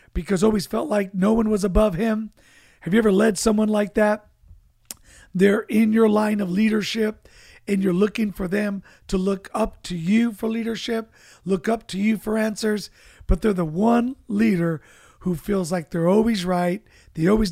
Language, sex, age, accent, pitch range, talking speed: English, male, 50-69, American, 175-215 Hz, 180 wpm